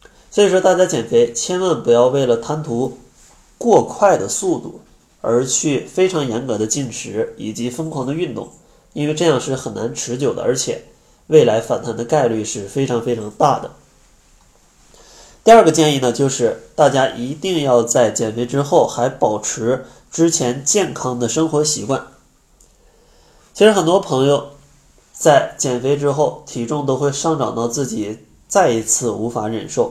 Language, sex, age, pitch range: Chinese, male, 20-39, 115-155 Hz